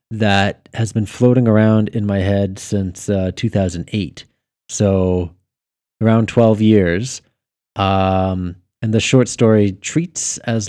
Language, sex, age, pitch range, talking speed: English, male, 20-39, 95-110 Hz, 125 wpm